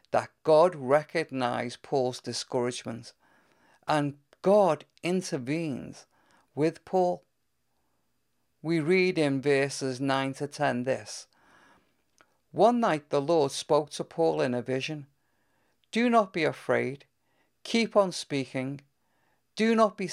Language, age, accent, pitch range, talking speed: English, 50-69, British, 135-185 Hz, 115 wpm